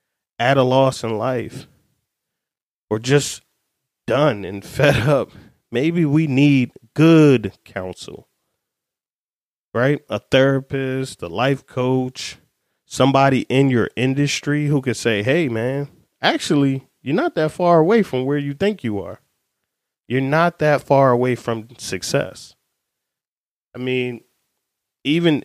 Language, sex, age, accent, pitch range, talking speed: English, male, 30-49, American, 120-150 Hz, 125 wpm